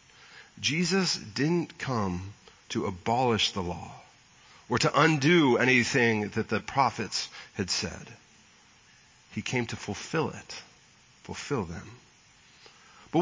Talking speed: 110 wpm